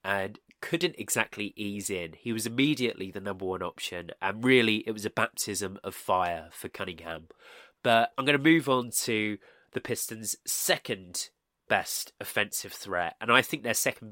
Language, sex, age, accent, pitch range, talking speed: English, male, 20-39, British, 100-130 Hz, 170 wpm